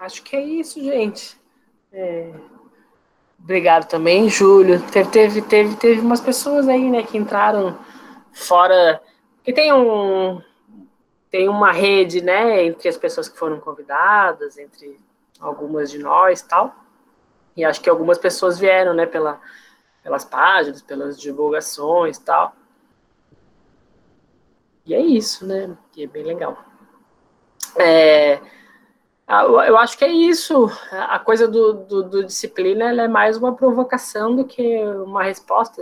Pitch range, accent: 160-230 Hz, Brazilian